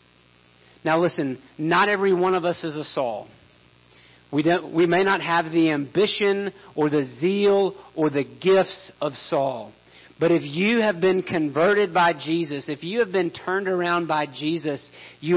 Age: 50-69